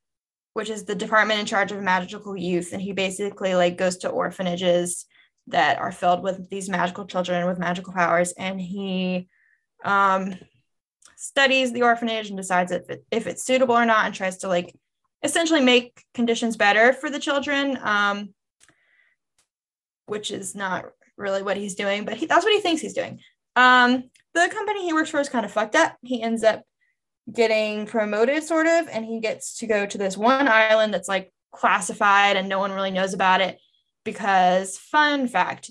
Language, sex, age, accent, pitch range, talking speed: English, female, 10-29, American, 190-255 Hz, 180 wpm